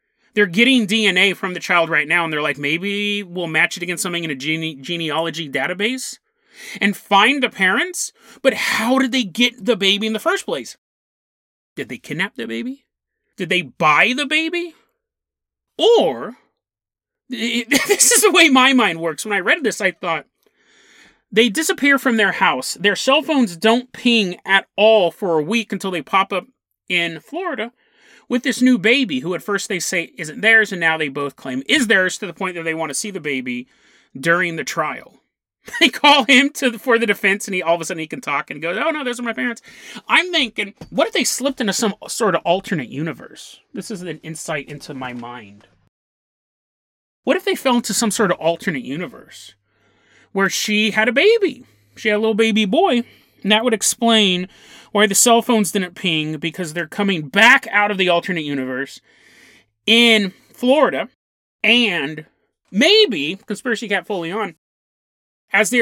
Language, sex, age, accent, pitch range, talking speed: English, male, 30-49, American, 165-240 Hz, 190 wpm